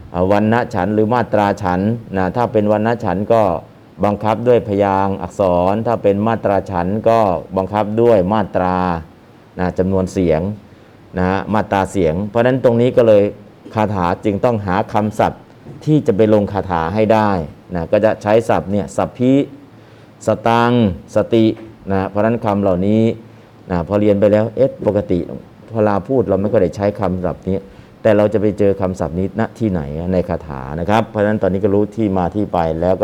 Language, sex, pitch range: Thai, male, 95-110 Hz